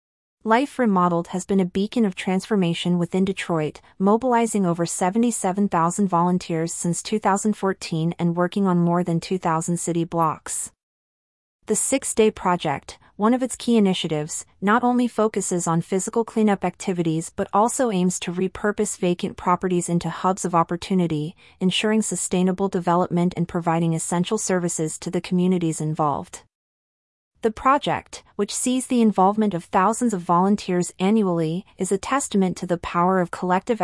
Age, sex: 30-49, female